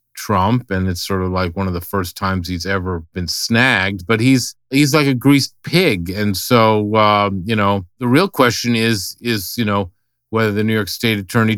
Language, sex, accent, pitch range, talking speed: English, male, American, 90-110 Hz, 205 wpm